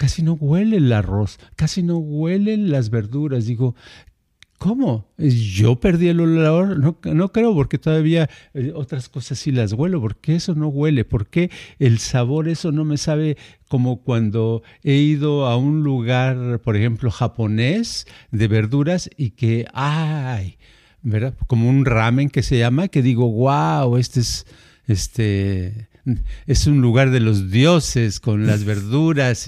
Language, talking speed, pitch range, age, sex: Spanish, 150 wpm, 115-150 Hz, 50-69, male